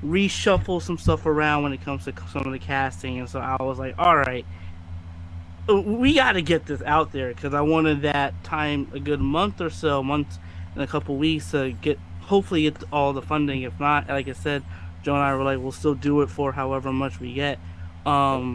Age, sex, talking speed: 20-39, male, 215 wpm